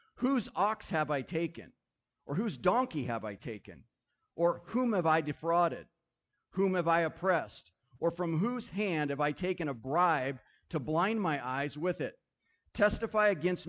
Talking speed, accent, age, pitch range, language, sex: 160 wpm, American, 40-59, 145-180 Hz, English, male